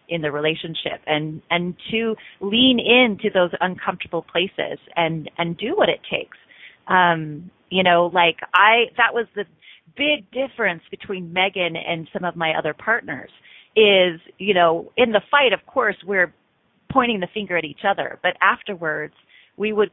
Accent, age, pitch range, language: American, 30-49, 160-200 Hz, English